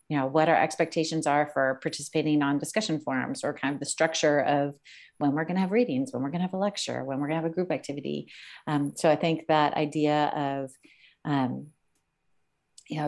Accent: American